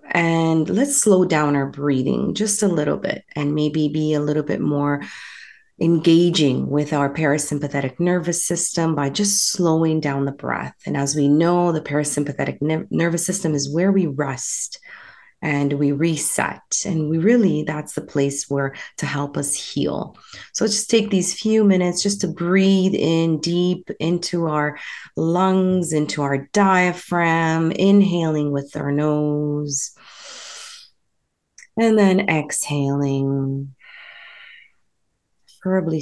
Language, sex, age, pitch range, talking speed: English, female, 30-49, 145-180 Hz, 135 wpm